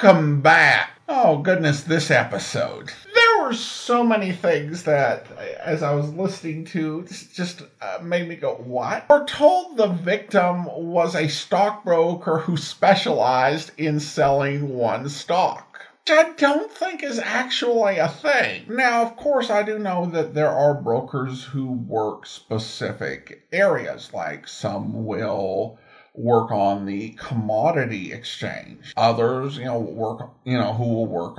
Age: 50-69